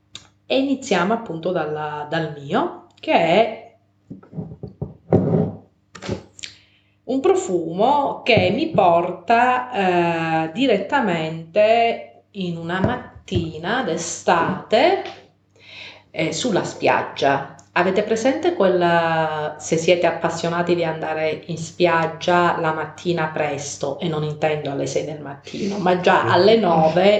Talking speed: 100 wpm